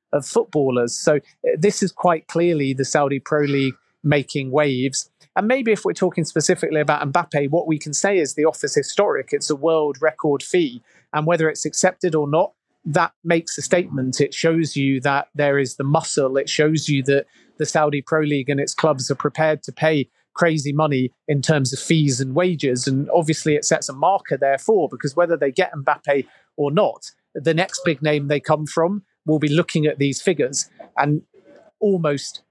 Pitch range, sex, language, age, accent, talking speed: 145-170 Hz, male, English, 40-59, British, 195 wpm